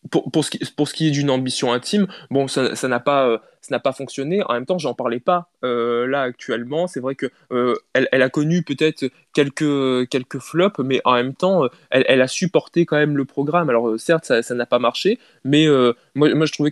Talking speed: 245 wpm